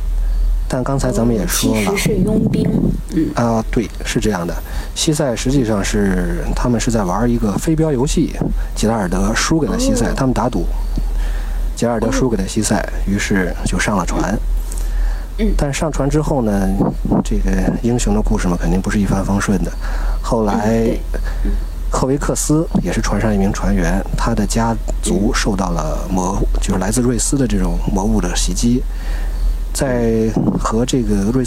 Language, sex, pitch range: Chinese, male, 95-125 Hz